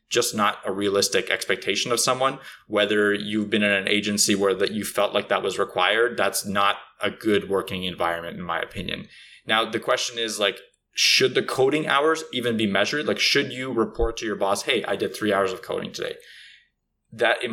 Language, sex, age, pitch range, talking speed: English, male, 20-39, 105-120 Hz, 200 wpm